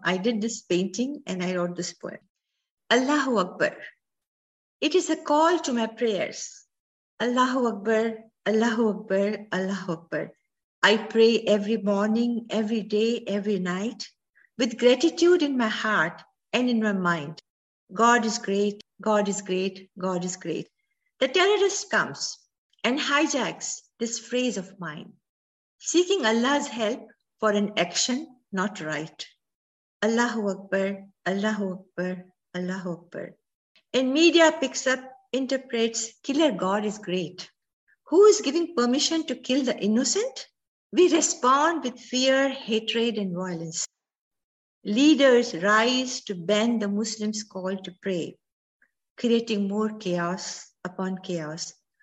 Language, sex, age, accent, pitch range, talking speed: English, female, 50-69, Indian, 185-250 Hz, 130 wpm